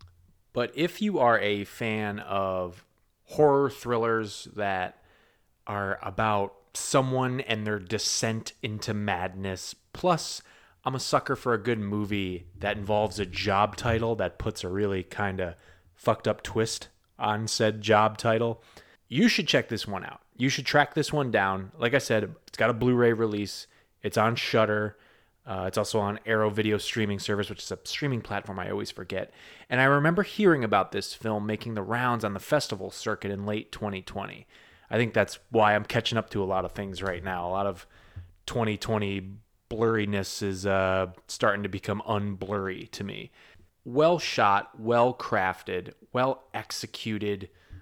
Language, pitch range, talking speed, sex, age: English, 100-120 Hz, 165 wpm, male, 20-39